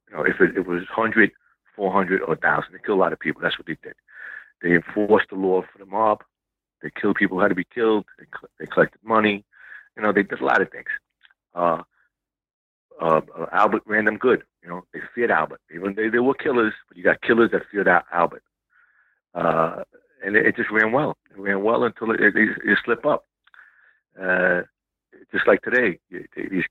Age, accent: 50-69, American